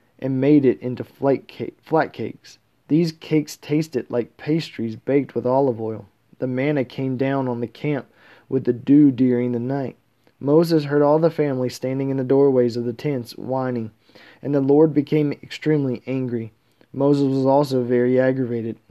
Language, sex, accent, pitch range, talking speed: English, male, American, 125-150 Hz, 165 wpm